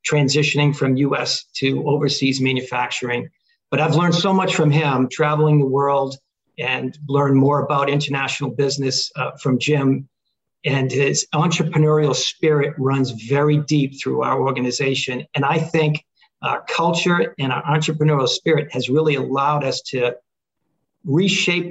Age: 50-69